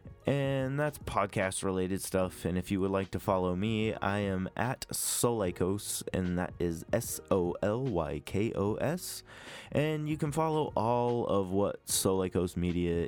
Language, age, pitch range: English, 20-39, 95-115 Hz